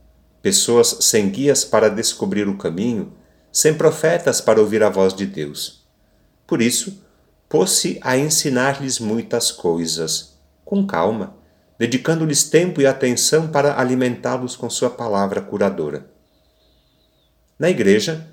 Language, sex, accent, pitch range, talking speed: Portuguese, male, Brazilian, 95-140 Hz, 120 wpm